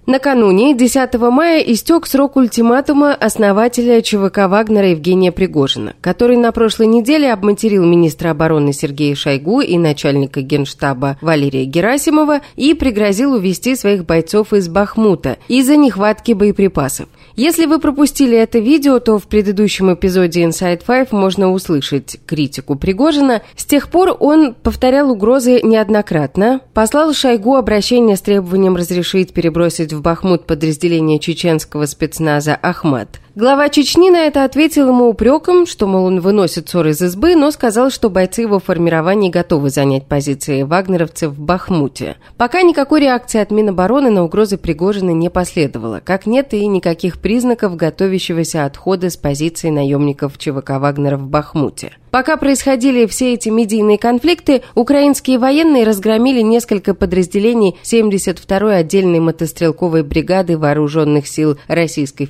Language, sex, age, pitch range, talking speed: Russian, female, 30-49, 165-245 Hz, 135 wpm